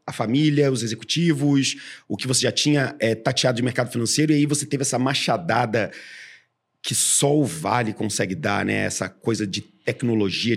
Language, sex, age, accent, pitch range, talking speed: Portuguese, male, 40-59, Brazilian, 110-140 Hz, 170 wpm